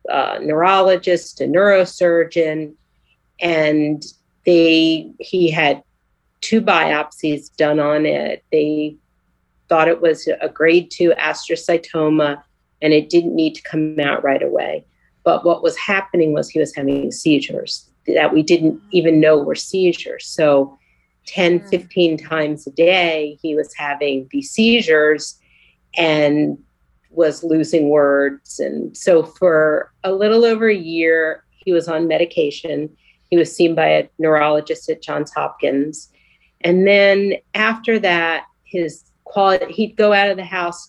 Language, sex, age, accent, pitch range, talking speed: English, female, 40-59, American, 150-180 Hz, 140 wpm